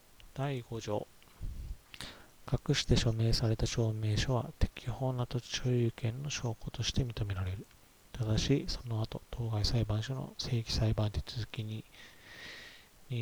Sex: male